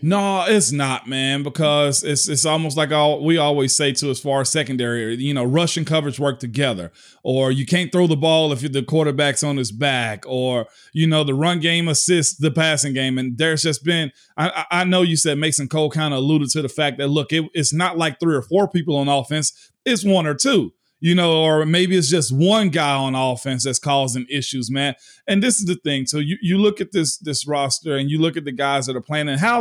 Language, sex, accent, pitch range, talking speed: English, male, American, 135-170 Hz, 235 wpm